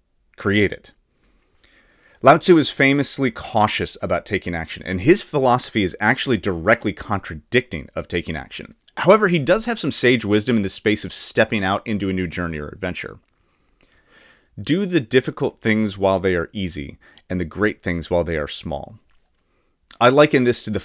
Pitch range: 95-125 Hz